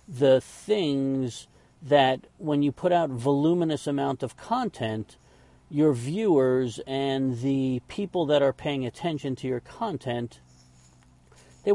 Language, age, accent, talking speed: English, 50-69, American, 125 wpm